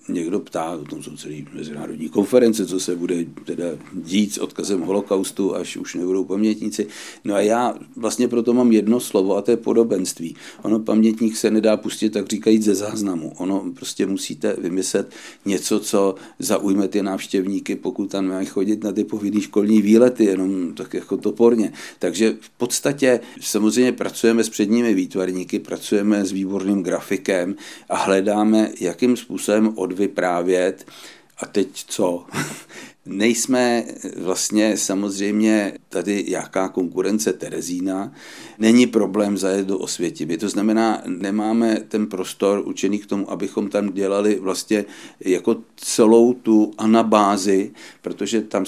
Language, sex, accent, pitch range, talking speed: Czech, male, native, 95-110 Hz, 140 wpm